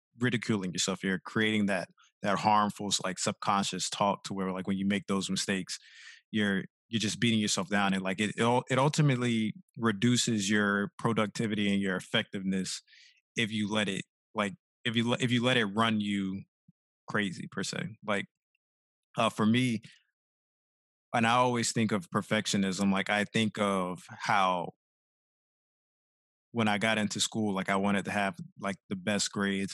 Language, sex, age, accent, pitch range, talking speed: English, male, 20-39, American, 100-115 Hz, 165 wpm